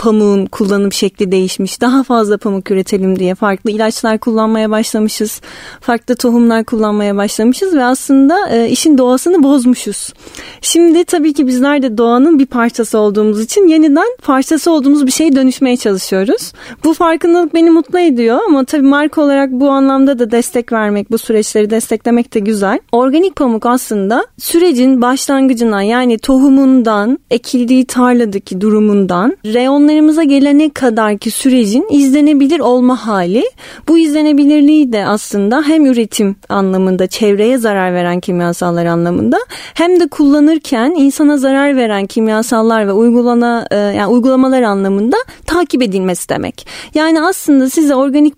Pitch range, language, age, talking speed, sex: 215-290 Hz, Turkish, 30-49, 135 wpm, female